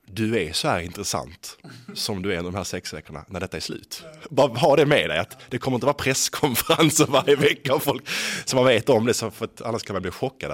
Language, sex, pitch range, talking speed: English, male, 85-120 Hz, 240 wpm